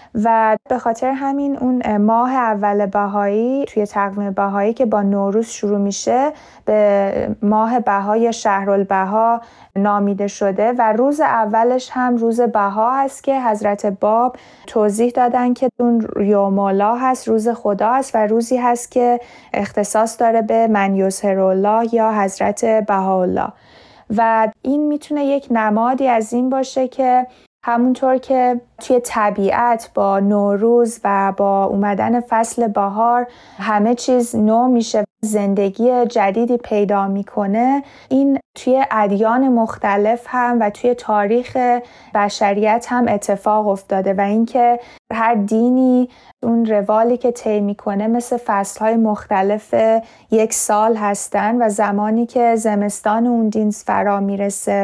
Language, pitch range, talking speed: Persian, 205-240 Hz, 125 wpm